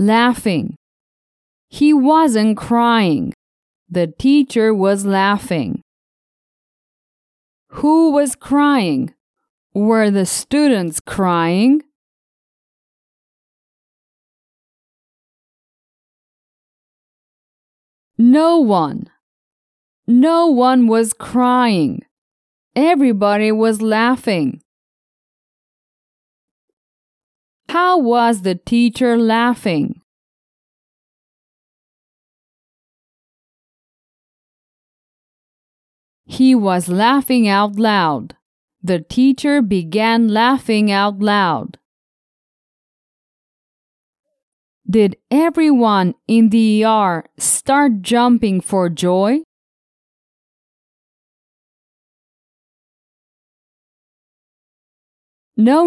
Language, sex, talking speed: English, female, 55 wpm